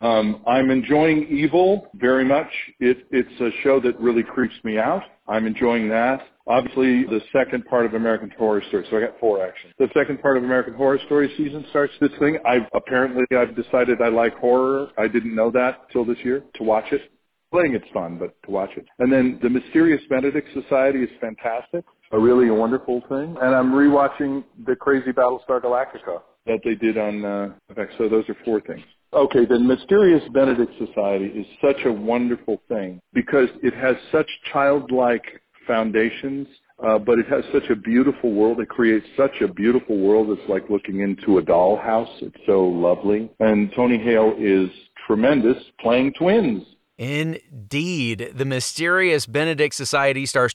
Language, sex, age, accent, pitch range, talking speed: English, male, 50-69, American, 115-140 Hz, 175 wpm